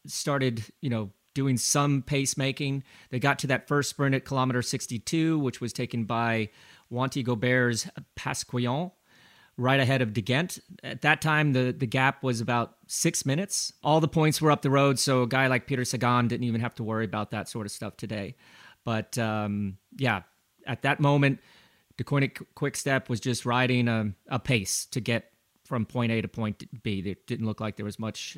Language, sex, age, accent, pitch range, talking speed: English, male, 30-49, American, 115-140 Hz, 195 wpm